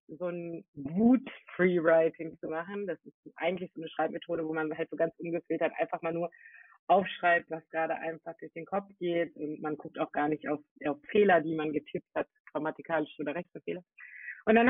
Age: 30-49